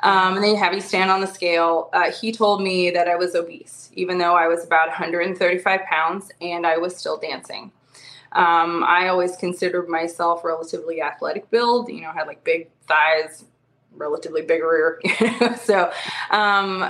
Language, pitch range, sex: English, 170-205 Hz, female